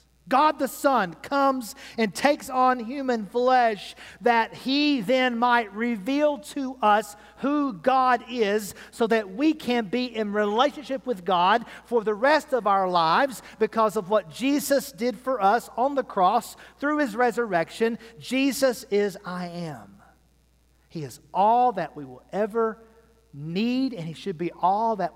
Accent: American